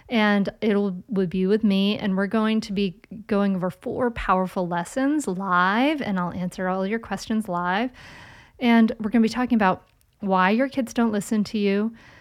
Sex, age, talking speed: female, 40-59, 185 wpm